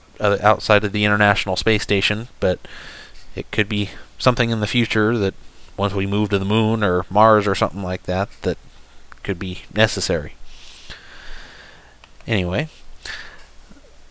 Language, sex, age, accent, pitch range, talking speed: English, male, 30-49, American, 95-115 Hz, 135 wpm